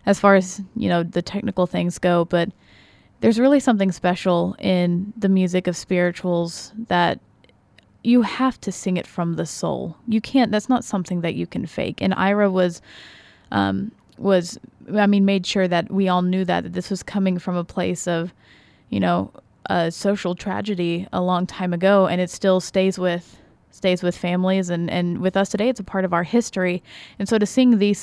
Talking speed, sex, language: 195 wpm, female, English